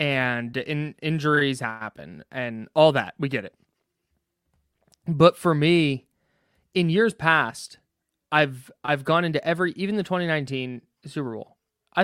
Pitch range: 125-175 Hz